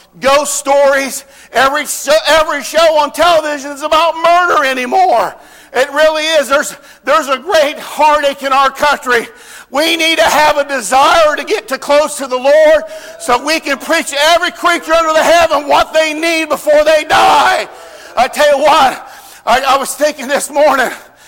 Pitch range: 270-315 Hz